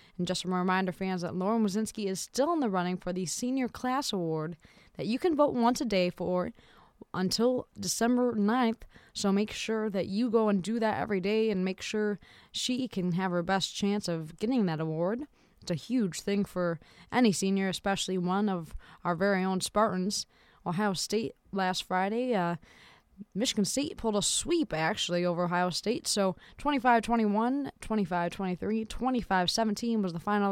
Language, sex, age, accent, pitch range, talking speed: English, female, 20-39, American, 185-225 Hz, 175 wpm